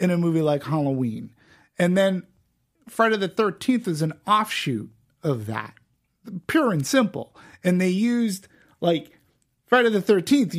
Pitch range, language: 145-185 Hz, English